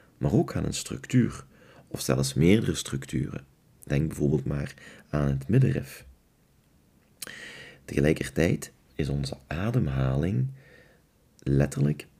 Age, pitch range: 40-59, 70-95 Hz